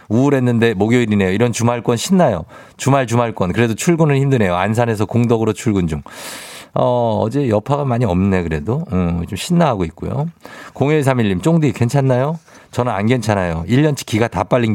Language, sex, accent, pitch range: Korean, male, native, 90-125 Hz